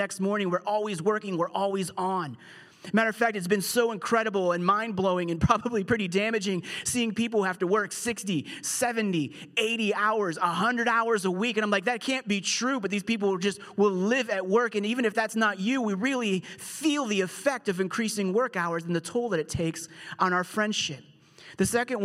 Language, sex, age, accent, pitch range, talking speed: English, male, 30-49, American, 170-215 Hz, 205 wpm